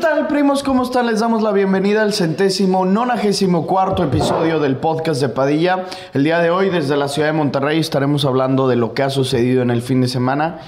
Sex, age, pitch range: male, 30-49, 115-145 Hz